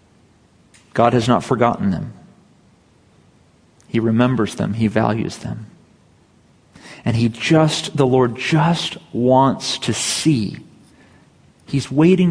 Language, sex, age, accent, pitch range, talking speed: English, male, 40-59, American, 115-170 Hz, 105 wpm